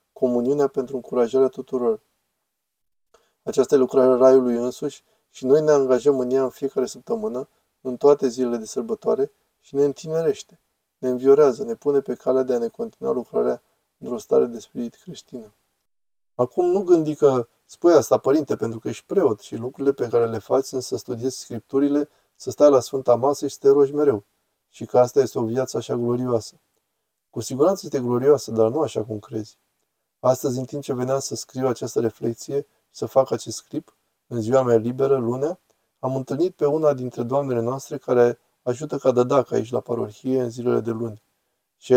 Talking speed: 180 wpm